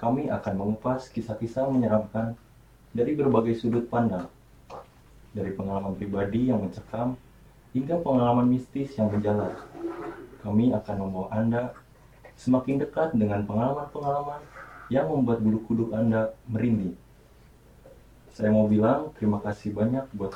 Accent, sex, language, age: native, male, Indonesian, 20-39